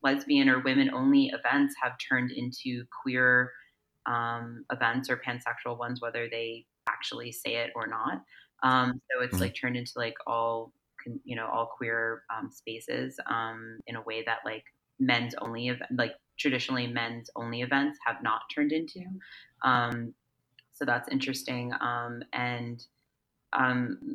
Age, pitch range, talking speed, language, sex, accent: 30-49, 125-190 Hz, 145 wpm, English, female, American